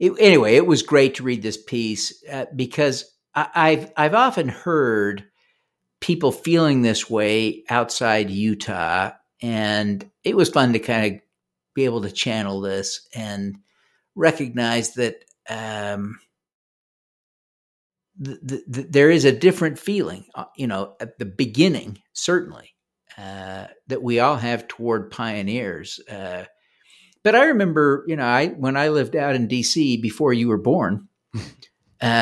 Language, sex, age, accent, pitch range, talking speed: English, male, 50-69, American, 110-145 Hz, 135 wpm